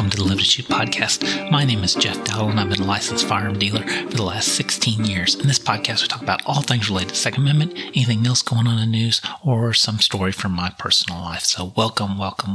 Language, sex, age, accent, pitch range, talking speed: English, male, 30-49, American, 105-145 Hz, 260 wpm